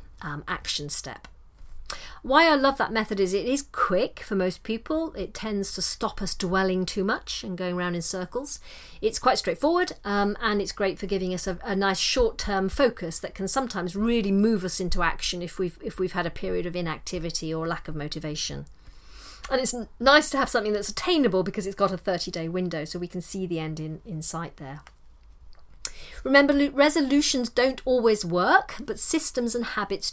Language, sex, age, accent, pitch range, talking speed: English, female, 40-59, British, 180-250 Hz, 190 wpm